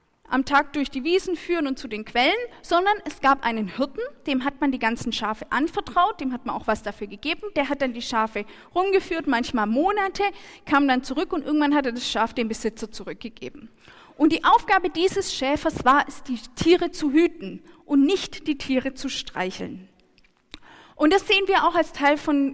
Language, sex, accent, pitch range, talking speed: German, female, German, 235-325 Hz, 195 wpm